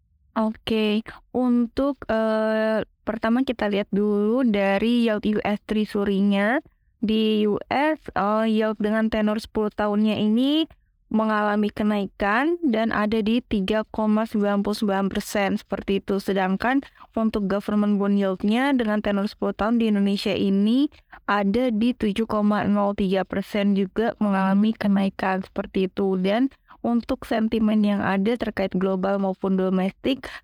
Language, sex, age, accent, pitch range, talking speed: Indonesian, female, 20-39, native, 200-225 Hz, 115 wpm